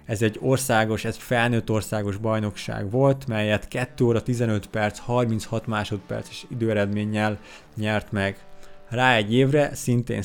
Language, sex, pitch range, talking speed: Hungarian, male, 105-125 Hz, 130 wpm